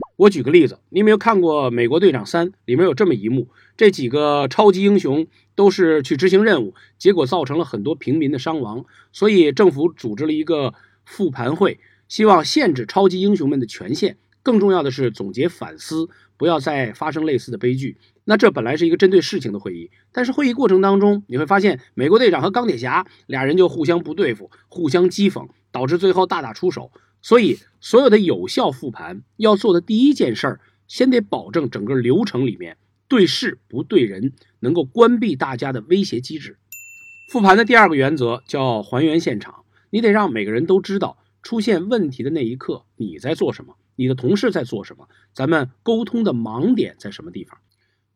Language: Chinese